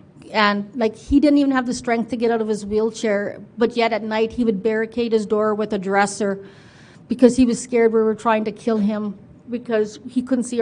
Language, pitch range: English, 215-240 Hz